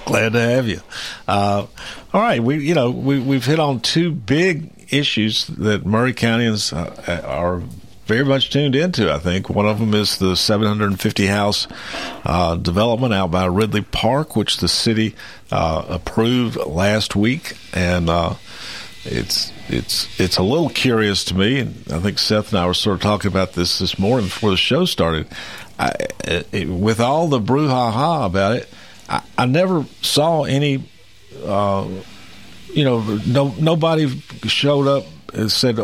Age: 50-69